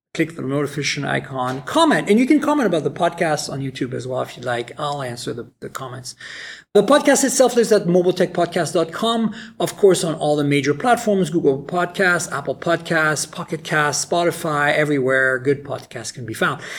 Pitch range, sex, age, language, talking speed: 145-215 Hz, male, 40-59, English, 180 wpm